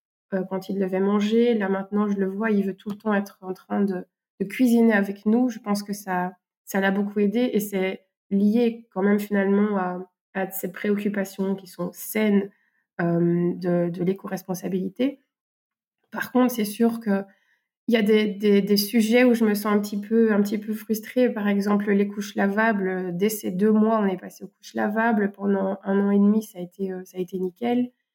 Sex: female